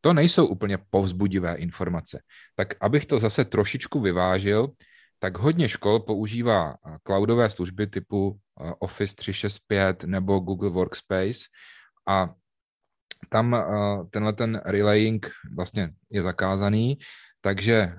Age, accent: 30-49, native